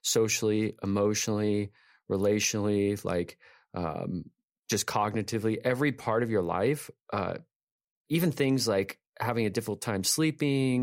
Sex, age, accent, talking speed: male, 30-49, American, 115 wpm